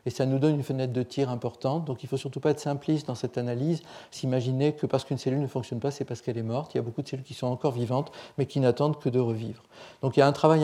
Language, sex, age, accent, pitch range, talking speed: French, male, 40-59, French, 125-145 Hz, 310 wpm